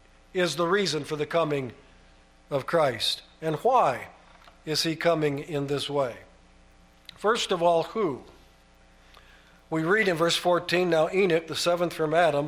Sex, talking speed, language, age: male, 150 wpm, English, 50-69